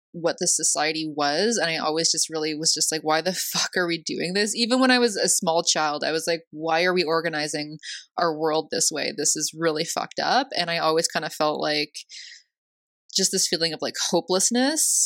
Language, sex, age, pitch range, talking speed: English, female, 20-39, 165-200 Hz, 220 wpm